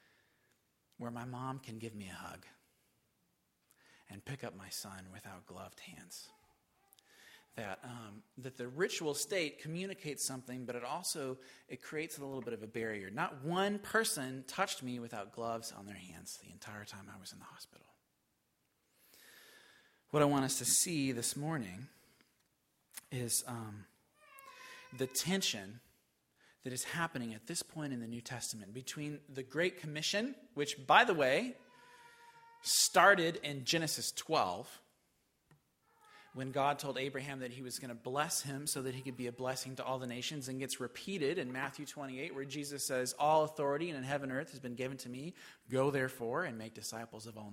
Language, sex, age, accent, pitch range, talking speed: English, male, 40-59, American, 120-155 Hz, 170 wpm